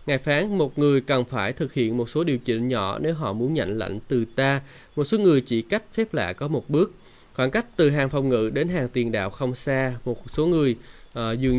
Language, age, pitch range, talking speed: Vietnamese, 20-39, 115-155 Hz, 245 wpm